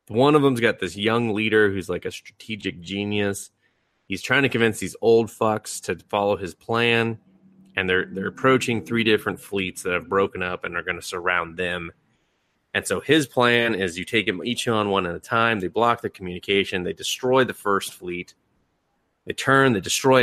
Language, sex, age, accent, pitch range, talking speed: English, male, 30-49, American, 95-130 Hz, 200 wpm